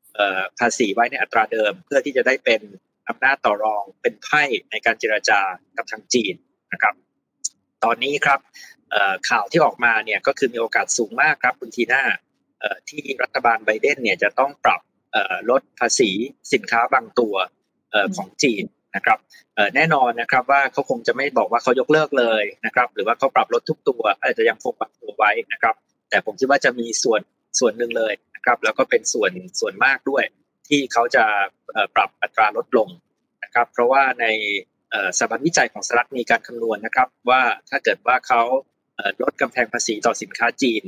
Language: Thai